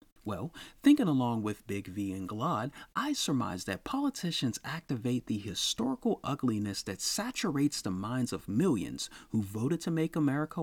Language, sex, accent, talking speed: English, male, American, 150 wpm